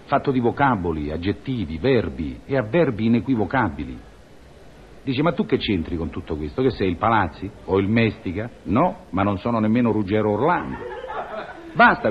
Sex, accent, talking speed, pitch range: male, native, 155 wpm, 105-170 Hz